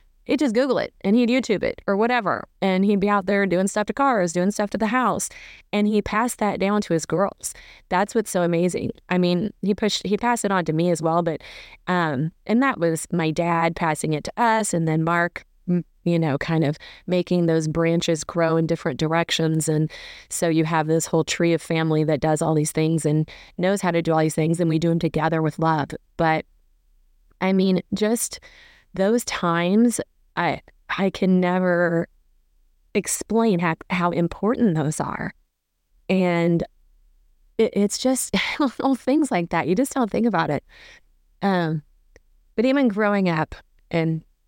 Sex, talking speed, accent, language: female, 185 wpm, American, English